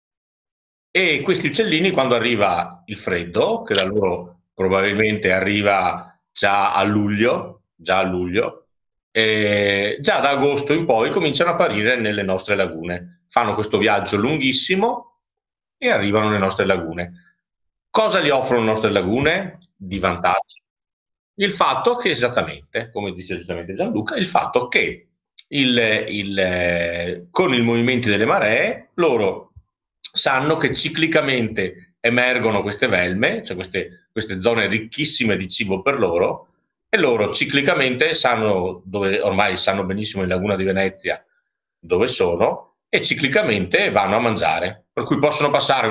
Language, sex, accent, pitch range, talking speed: Italian, male, native, 95-145 Hz, 135 wpm